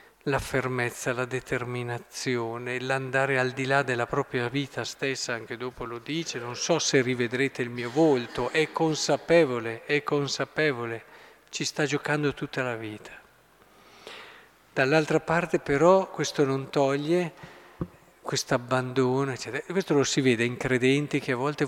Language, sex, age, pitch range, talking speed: Italian, male, 50-69, 130-165 Hz, 140 wpm